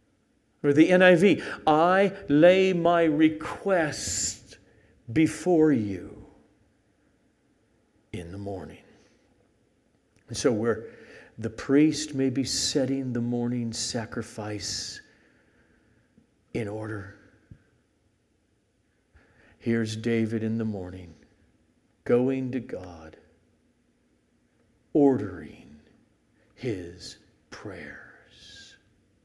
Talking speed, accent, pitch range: 75 wpm, American, 110-135 Hz